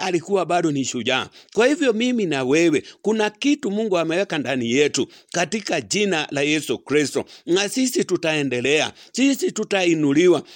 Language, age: English, 60-79